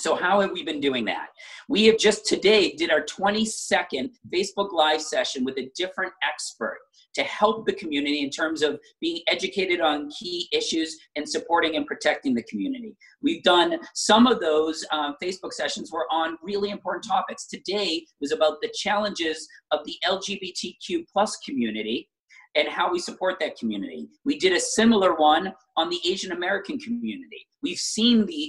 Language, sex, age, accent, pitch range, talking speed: English, male, 40-59, American, 160-255 Hz, 170 wpm